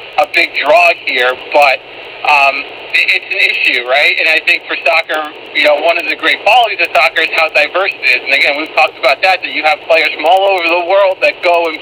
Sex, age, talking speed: male, 50-69, 240 wpm